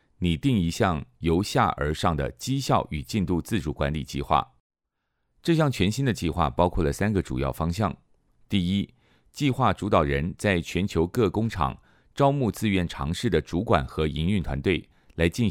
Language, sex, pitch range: Chinese, male, 75-110 Hz